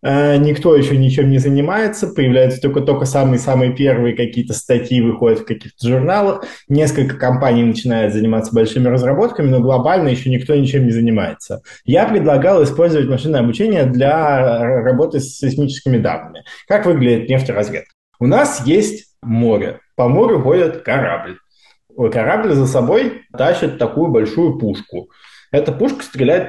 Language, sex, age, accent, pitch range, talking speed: Russian, male, 20-39, native, 120-145 Hz, 135 wpm